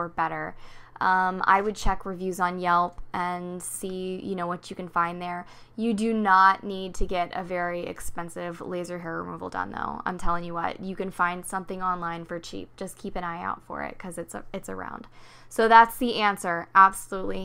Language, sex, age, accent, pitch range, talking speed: English, female, 10-29, American, 175-205 Hz, 205 wpm